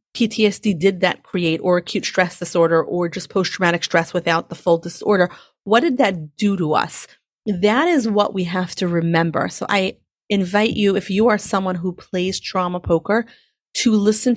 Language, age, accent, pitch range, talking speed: English, 30-49, American, 175-210 Hz, 180 wpm